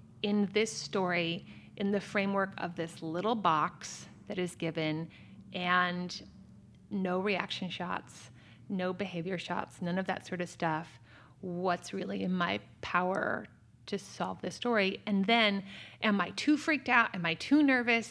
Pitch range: 170-205 Hz